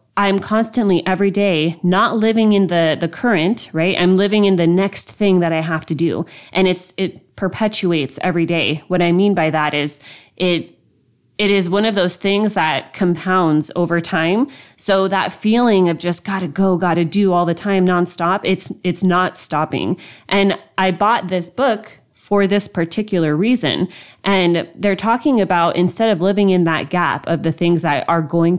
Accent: American